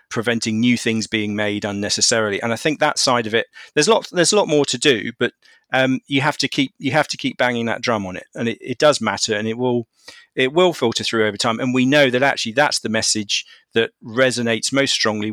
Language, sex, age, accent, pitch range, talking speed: English, male, 40-59, British, 110-130 Hz, 245 wpm